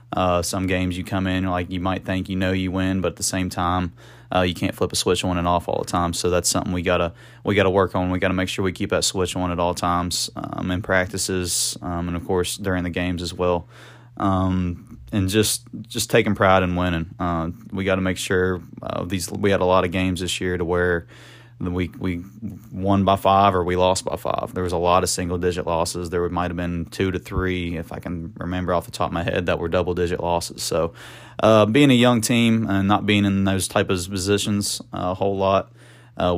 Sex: male